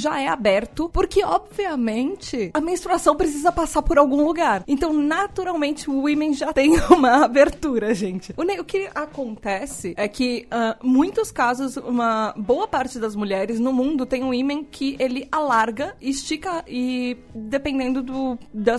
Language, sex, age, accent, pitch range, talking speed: Portuguese, female, 20-39, Brazilian, 250-310 Hz, 150 wpm